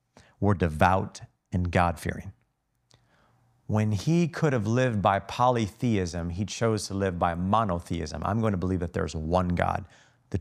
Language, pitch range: English, 95-125 Hz